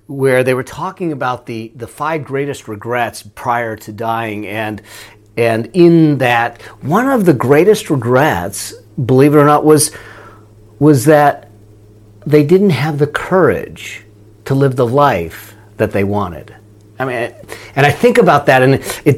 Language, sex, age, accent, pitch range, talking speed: English, male, 40-59, American, 115-155 Hz, 155 wpm